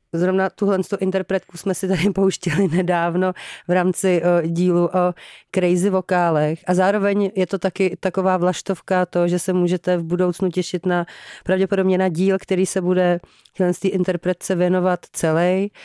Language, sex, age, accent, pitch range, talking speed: Czech, female, 30-49, native, 165-185 Hz, 150 wpm